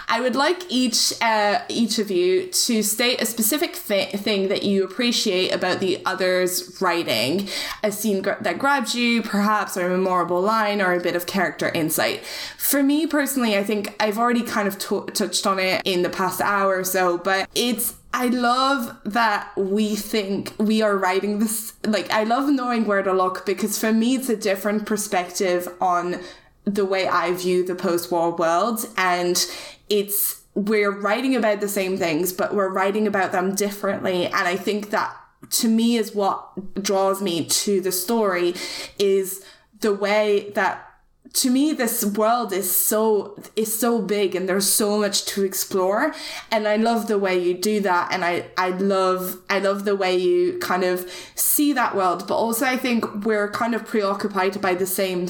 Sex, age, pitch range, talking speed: female, 10-29, 185-220 Hz, 185 wpm